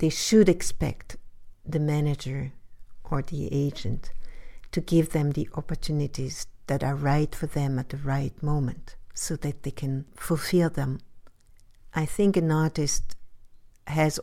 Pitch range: 135-160 Hz